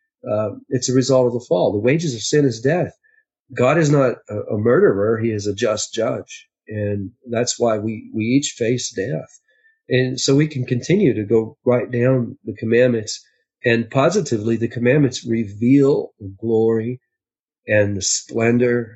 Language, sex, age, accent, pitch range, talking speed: English, male, 40-59, American, 115-135 Hz, 170 wpm